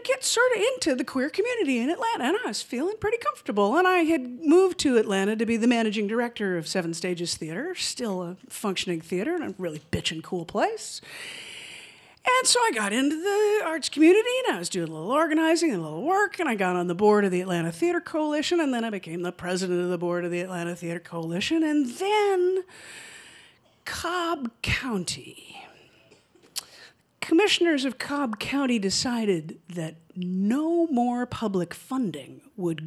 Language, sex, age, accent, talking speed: English, female, 50-69, American, 180 wpm